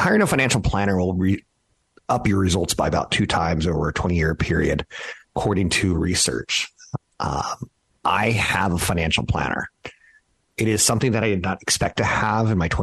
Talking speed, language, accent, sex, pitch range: 180 wpm, English, American, male, 85-110 Hz